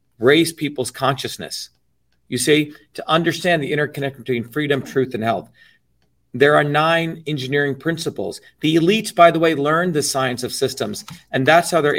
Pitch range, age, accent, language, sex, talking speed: 130-170 Hz, 40-59, American, English, male, 165 wpm